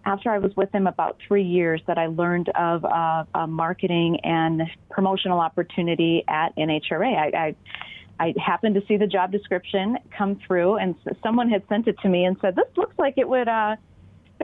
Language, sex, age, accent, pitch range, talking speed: English, female, 30-49, American, 165-200 Hz, 195 wpm